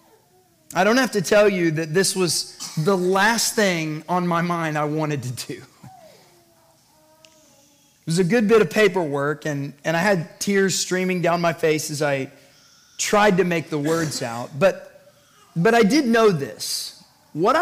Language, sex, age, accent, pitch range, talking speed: English, male, 30-49, American, 155-215 Hz, 170 wpm